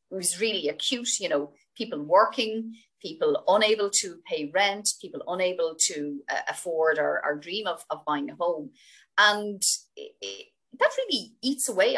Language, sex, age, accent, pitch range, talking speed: English, female, 30-49, Irish, 185-260 Hz, 160 wpm